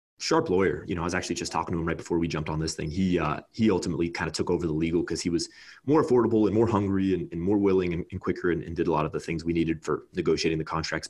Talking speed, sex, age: 310 wpm, male, 30-49